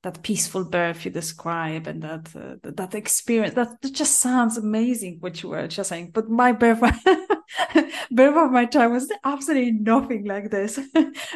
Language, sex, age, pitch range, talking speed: English, female, 20-39, 190-230 Hz, 180 wpm